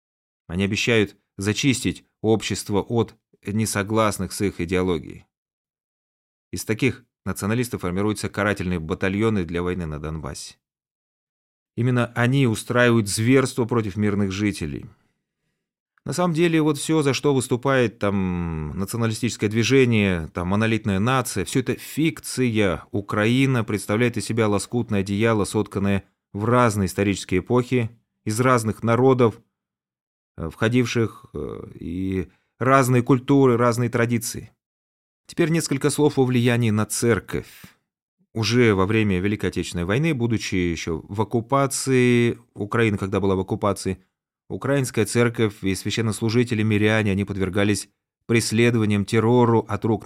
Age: 30-49